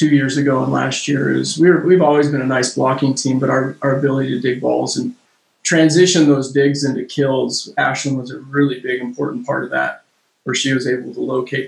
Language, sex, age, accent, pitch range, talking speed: English, male, 30-49, American, 130-140 Hz, 225 wpm